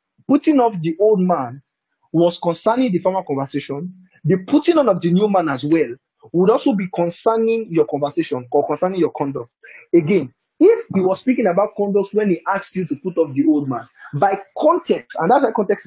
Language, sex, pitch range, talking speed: English, male, 160-230 Hz, 195 wpm